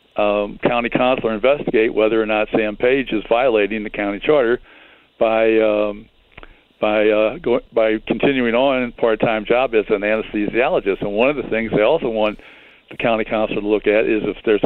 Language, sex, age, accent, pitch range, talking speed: English, male, 60-79, American, 105-115 Hz, 185 wpm